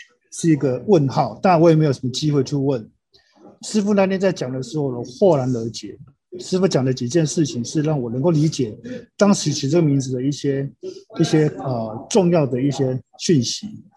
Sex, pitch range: male, 130-185 Hz